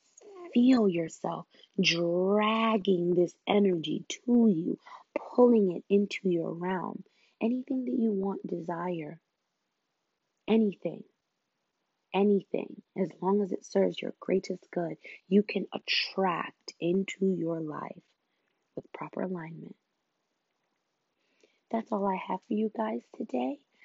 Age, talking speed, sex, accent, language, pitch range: 20-39, 110 wpm, female, American, English, 175-220 Hz